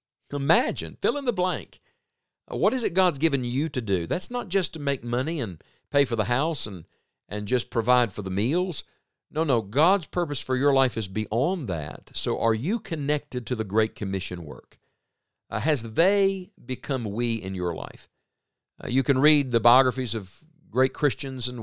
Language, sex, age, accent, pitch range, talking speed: English, male, 50-69, American, 105-135 Hz, 190 wpm